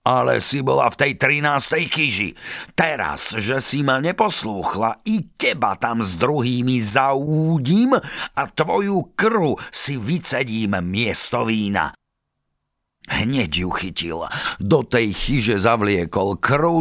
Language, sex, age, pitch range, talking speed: Slovak, male, 50-69, 85-140 Hz, 120 wpm